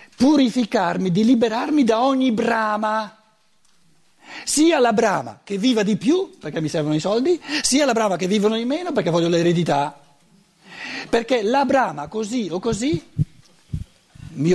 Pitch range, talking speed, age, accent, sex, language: 140-225 Hz, 145 wpm, 60-79, native, male, Italian